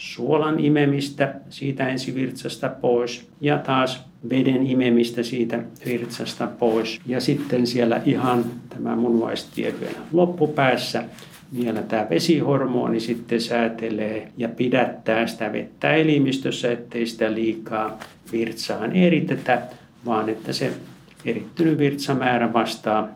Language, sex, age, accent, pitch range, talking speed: Finnish, male, 60-79, native, 115-135 Hz, 110 wpm